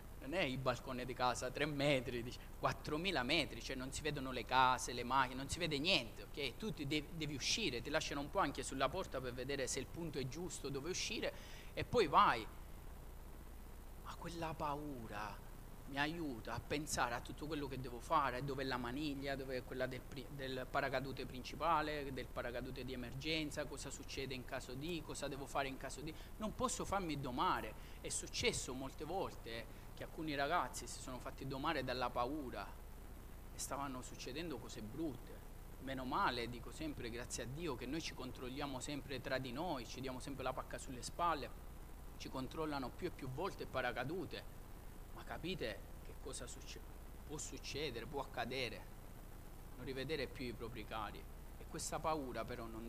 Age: 30-49